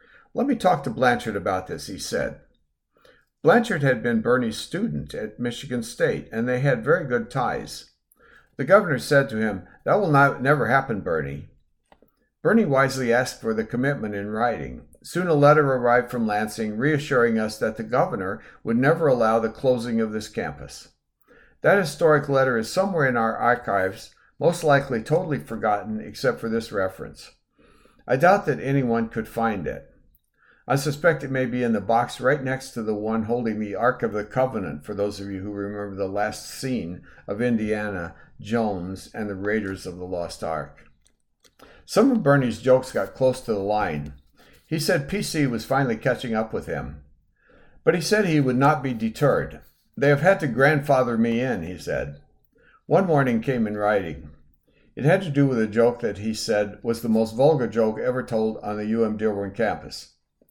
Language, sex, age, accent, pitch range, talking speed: English, male, 60-79, American, 105-135 Hz, 180 wpm